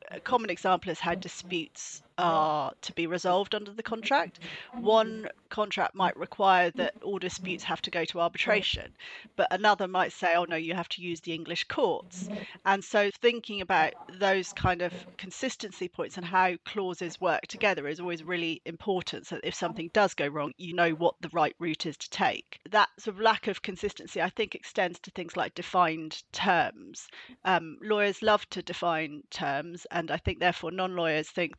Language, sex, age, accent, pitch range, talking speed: English, female, 30-49, British, 170-210 Hz, 185 wpm